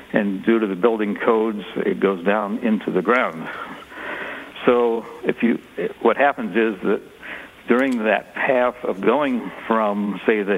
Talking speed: 155 wpm